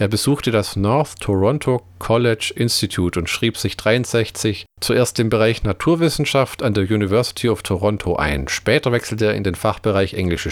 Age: 40-59